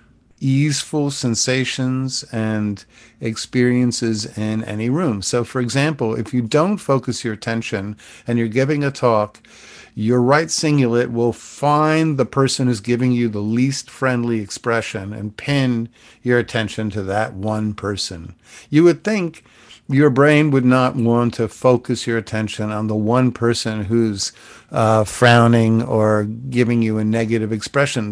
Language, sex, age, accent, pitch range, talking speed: English, male, 50-69, American, 110-130 Hz, 145 wpm